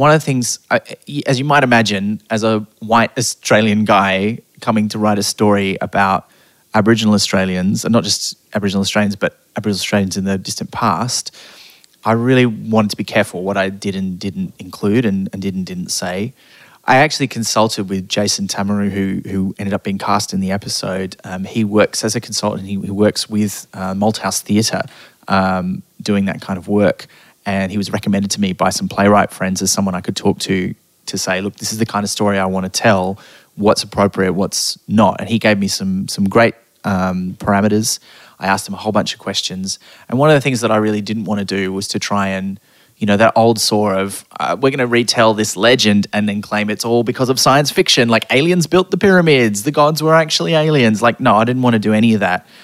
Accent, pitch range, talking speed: Australian, 100-115 Hz, 220 wpm